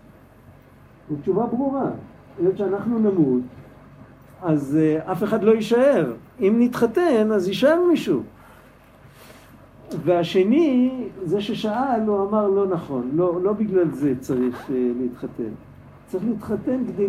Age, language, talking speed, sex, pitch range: 50-69, Hebrew, 125 wpm, male, 150-220 Hz